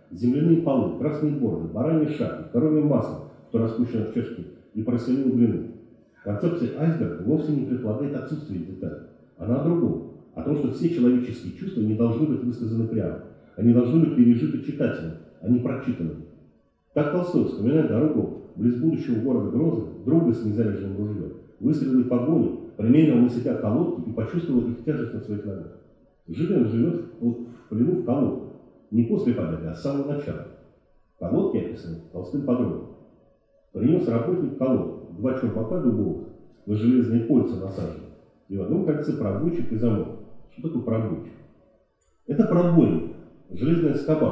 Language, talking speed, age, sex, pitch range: Russian, 150 wpm, 40-59, male, 110-140 Hz